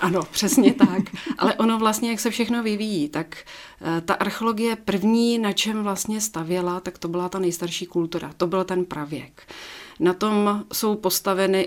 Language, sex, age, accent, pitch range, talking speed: Czech, female, 40-59, native, 175-205 Hz, 165 wpm